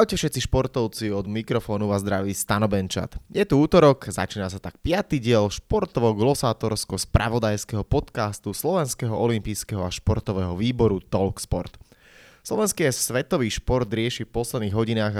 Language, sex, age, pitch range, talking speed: Slovak, male, 20-39, 100-120 Hz, 125 wpm